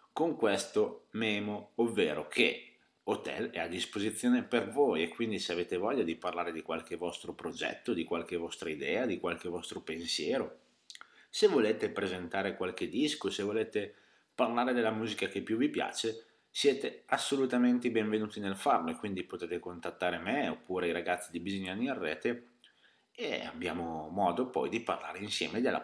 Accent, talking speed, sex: native, 160 wpm, male